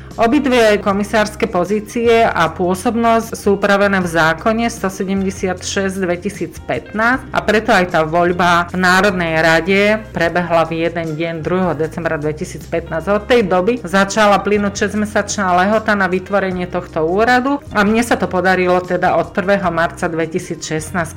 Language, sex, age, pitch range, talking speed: Slovak, female, 40-59, 175-210 Hz, 130 wpm